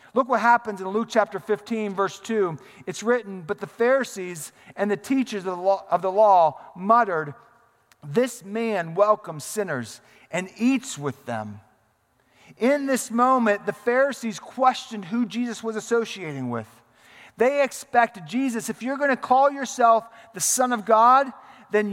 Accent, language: American, English